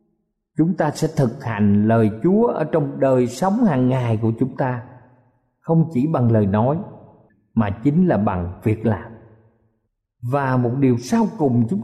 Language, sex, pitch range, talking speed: Vietnamese, male, 125-180 Hz, 165 wpm